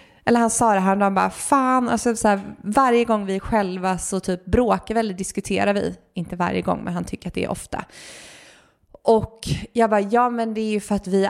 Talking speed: 230 wpm